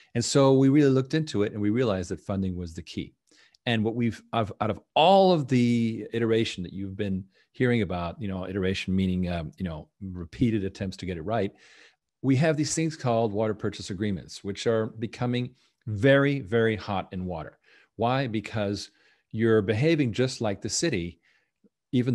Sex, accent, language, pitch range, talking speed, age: male, American, English, 95-115 Hz, 180 wpm, 40-59